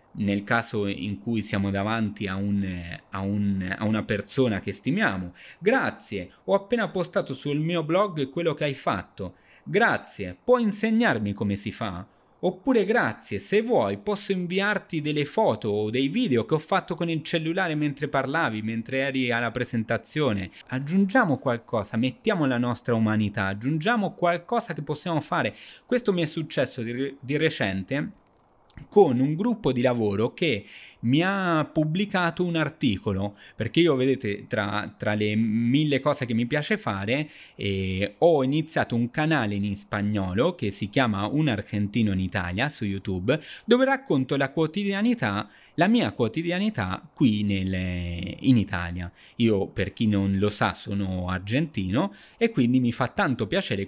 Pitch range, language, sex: 100-165 Hz, Italian, male